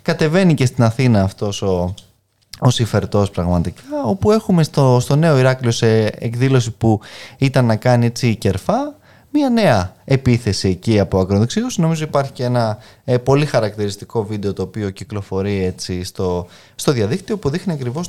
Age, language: 20-39, Greek